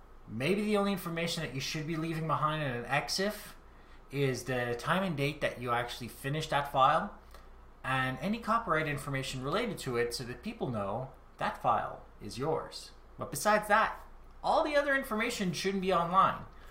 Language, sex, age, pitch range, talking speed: English, male, 30-49, 115-170 Hz, 175 wpm